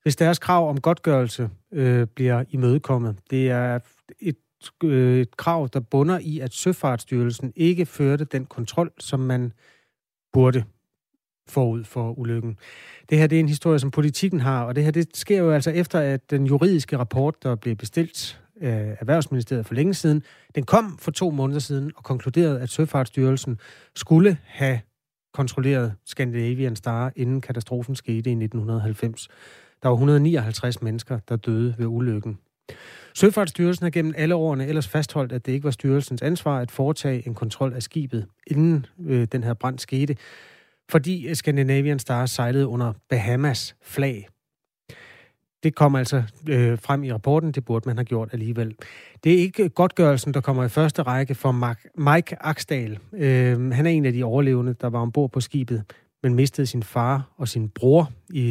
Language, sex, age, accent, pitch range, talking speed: Danish, male, 30-49, native, 120-155 Hz, 170 wpm